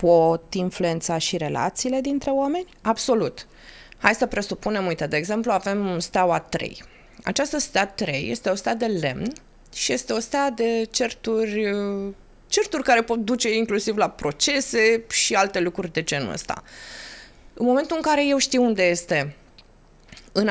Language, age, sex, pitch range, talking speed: Romanian, 20-39, female, 175-255 Hz, 150 wpm